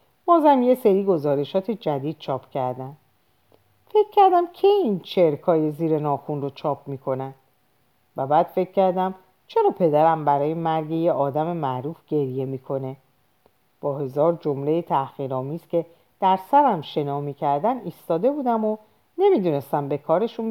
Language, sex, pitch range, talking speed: Persian, female, 135-210 Hz, 130 wpm